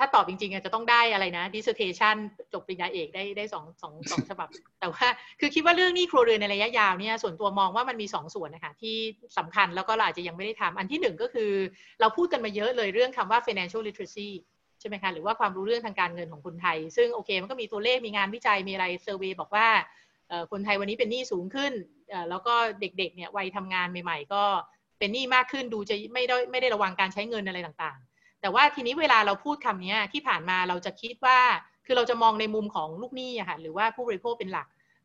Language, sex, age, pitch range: Thai, female, 30-49, 195-245 Hz